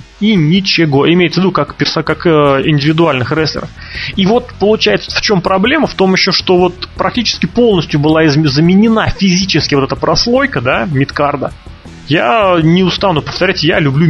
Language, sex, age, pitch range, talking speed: Russian, male, 20-39, 140-180 Hz, 160 wpm